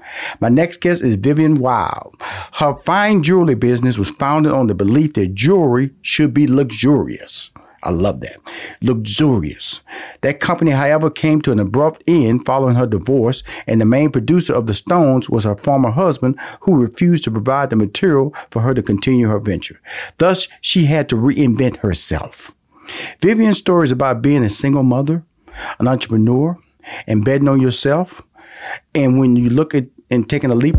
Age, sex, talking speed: 50-69, male, 170 wpm